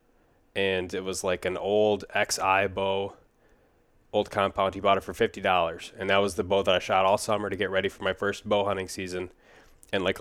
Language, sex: English, male